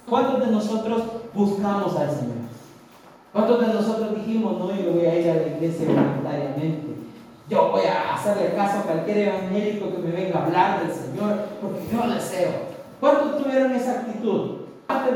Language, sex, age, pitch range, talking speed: Spanish, male, 40-59, 180-245 Hz, 170 wpm